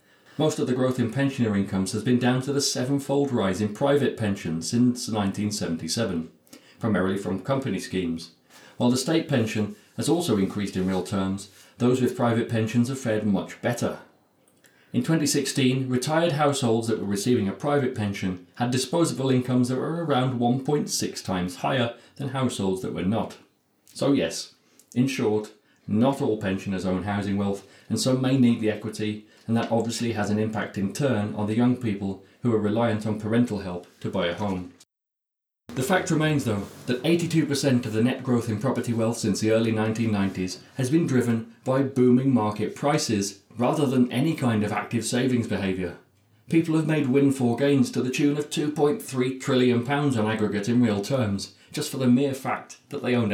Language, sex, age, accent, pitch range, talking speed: English, male, 40-59, British, 105-130 Hz, 180 wpm